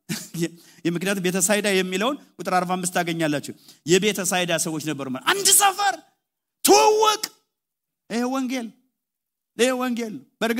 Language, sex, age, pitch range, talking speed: English, male, 50-69, 145-200 Hz, 80 wpm